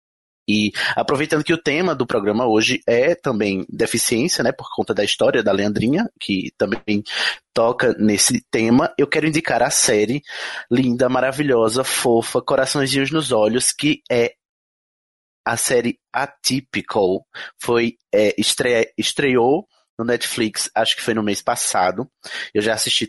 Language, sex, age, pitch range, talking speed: Portuguese, male, 20-39, 110-140 Hz, 140 wpm